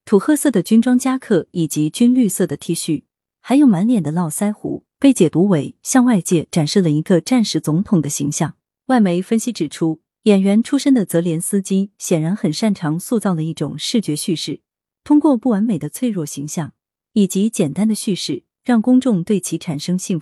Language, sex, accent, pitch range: Chinese, female, native, 160-230 Hz